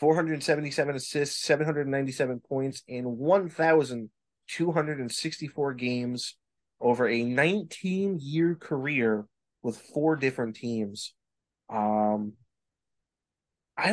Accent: American